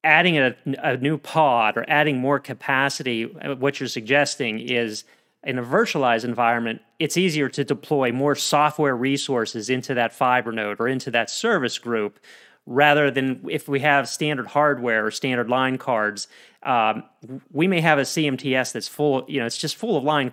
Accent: American